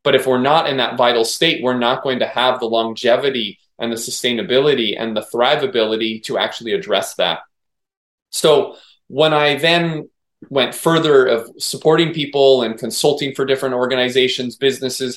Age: 20-39